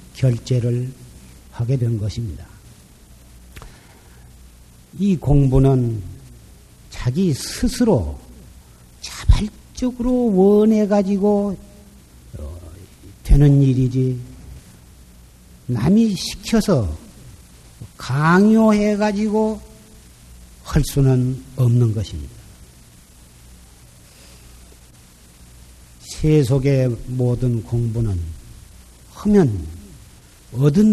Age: 50-69